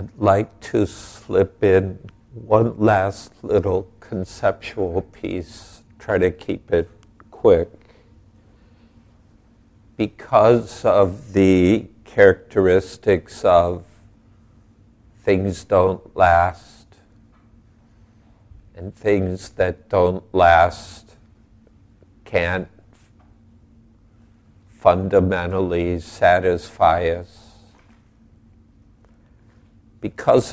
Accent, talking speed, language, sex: American, 65 wpm, English, male